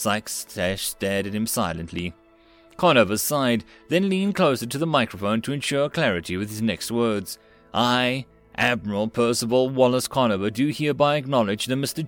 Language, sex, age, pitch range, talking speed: English, male, 30-49, 110-140 Hz, 150 wpm